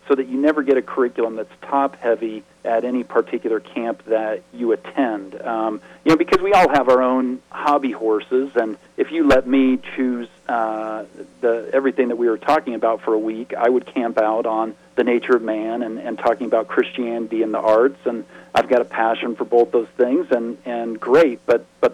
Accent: American